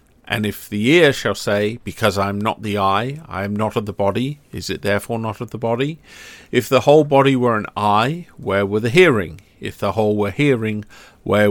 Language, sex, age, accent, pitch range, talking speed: English, male, 50-69, British, 105-135 Hz, 220 wpm